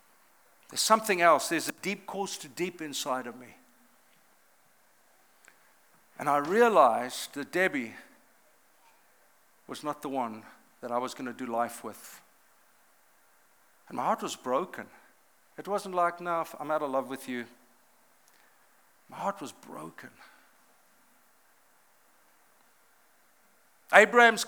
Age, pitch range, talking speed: 50-69, 170-215 Hz, 125 wpm